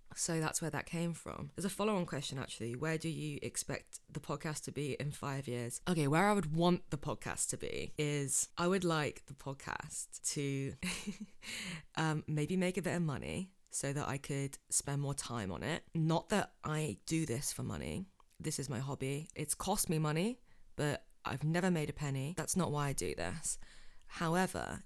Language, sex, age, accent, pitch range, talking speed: English, female, 20-39, British, 140-170 Hz, 200 wpm